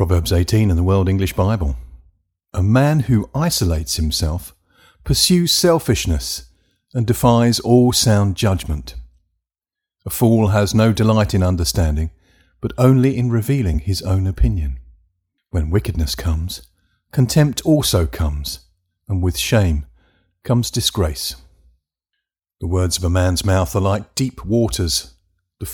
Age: 50-69